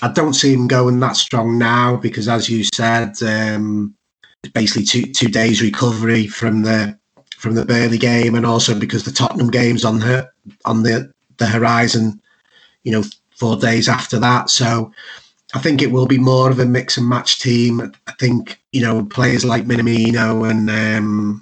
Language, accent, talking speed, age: English, British, 180 wpm, 30-49